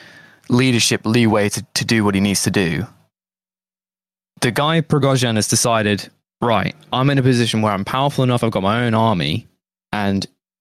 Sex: male